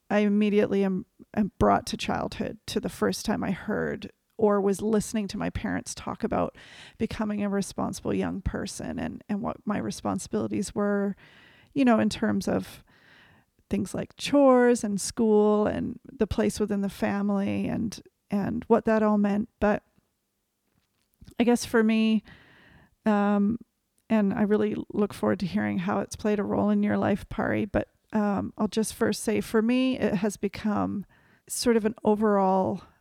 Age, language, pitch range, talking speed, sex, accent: 40-59, English, 200-220 Hz, 165 wpm, female, American